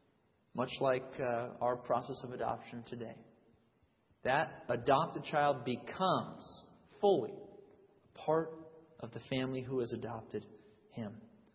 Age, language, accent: 40-59, English, American